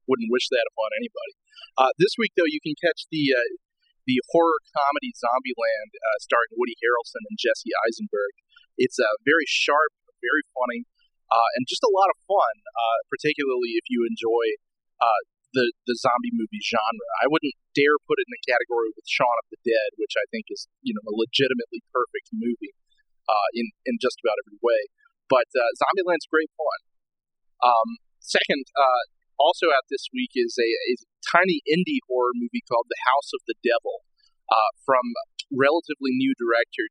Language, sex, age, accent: English, male, 30-49, American